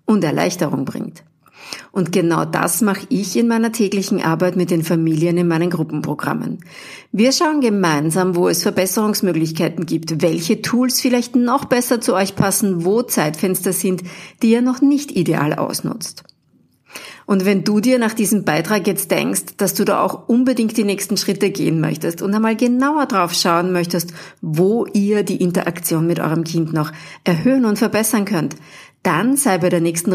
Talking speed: 165 wpm